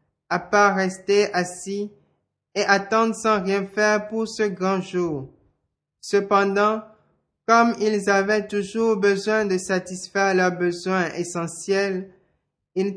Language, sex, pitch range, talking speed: French, male, 185-210 Hz, 115 wpm